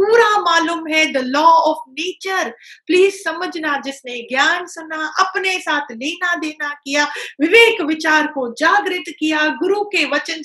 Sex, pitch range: female, 270-350 Hz